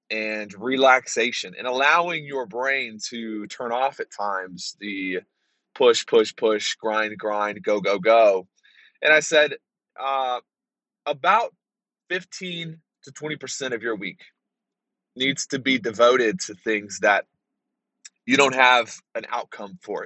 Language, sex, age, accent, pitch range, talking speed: English, male, 20-39, American, 110-150 Hz, 130 wpm